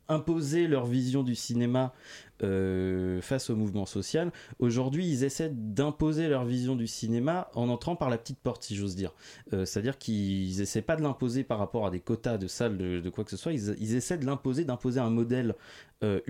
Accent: French